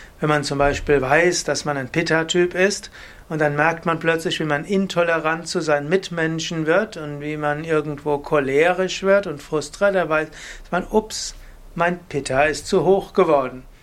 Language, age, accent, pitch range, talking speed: German, 60-79, German, 145-180 Hz, 175 wpm